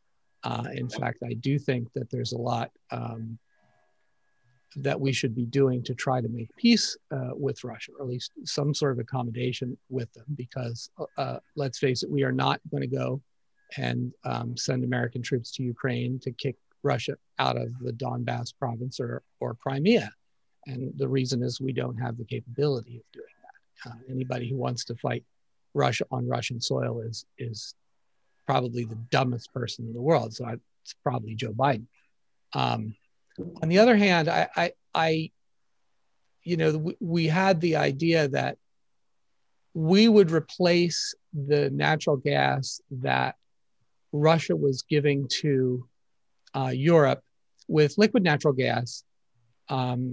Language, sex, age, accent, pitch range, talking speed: English, male, 50-69, American, 120-150 Hz, 160 wpm